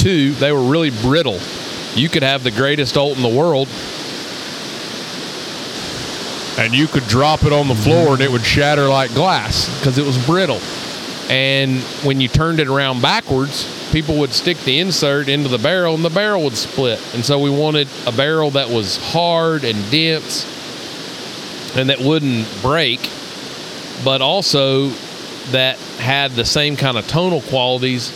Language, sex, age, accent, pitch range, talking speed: English, male, 40-59, American, 120-145 Hz, 165 wpm